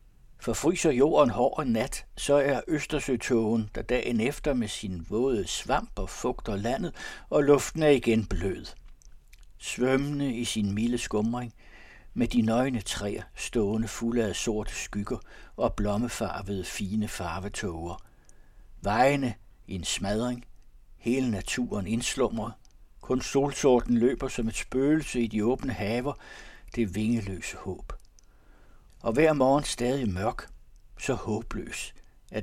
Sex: male